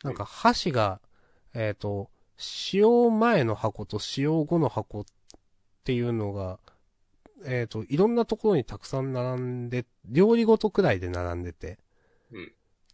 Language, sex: Japanese, male